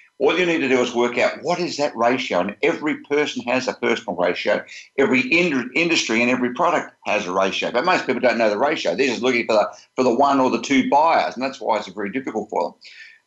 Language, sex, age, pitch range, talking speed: English, male, 50-69, 115-145 Hz, 255 wpm